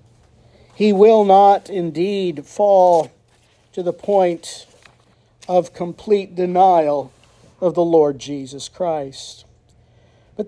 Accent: American